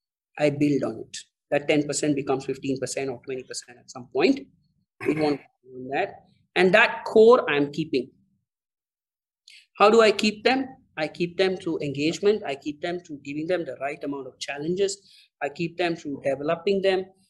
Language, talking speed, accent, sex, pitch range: English, 165 wpm, Indian, male, 140-190 Hz